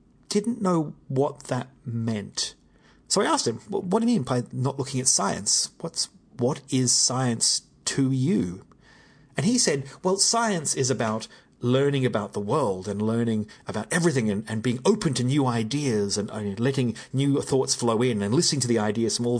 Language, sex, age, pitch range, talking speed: English, male, 30-49, 115-160 Hz, 185 wpm